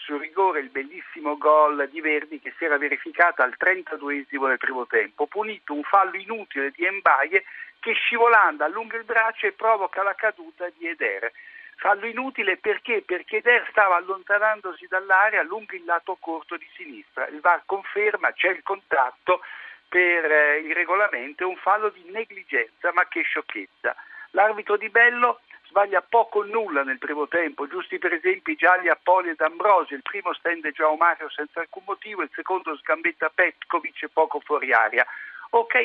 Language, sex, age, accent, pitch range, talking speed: Italian, male, 60-79, native, 155-235 Hz, 165 wpm